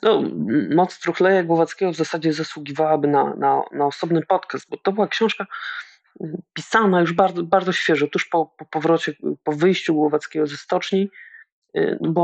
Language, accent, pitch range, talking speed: Polish, native, 150-185 Hz, 150 wpm